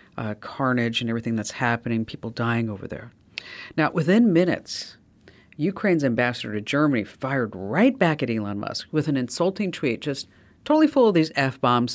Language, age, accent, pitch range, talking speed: English, 50-69, American, 115-160 Hz, 165 wpm